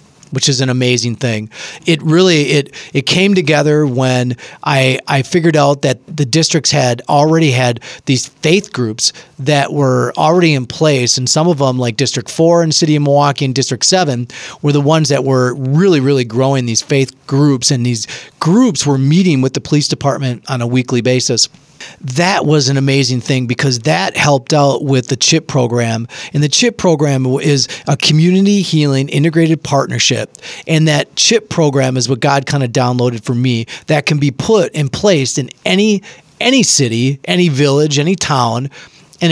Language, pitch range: English, 130-160 Hz